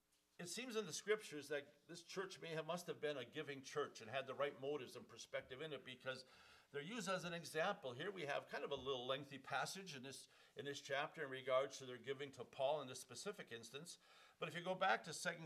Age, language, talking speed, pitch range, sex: 50-69, English, 245 wpm, 140-175 Hz, male